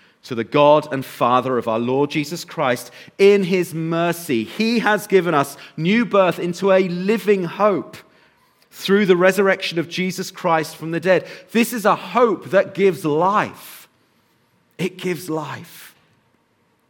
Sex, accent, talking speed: male, British, 150 wpm